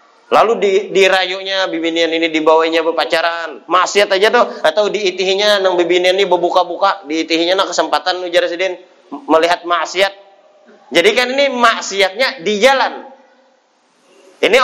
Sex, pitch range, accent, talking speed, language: male, 155-200 Hz, native, 125 wpm, Indonesian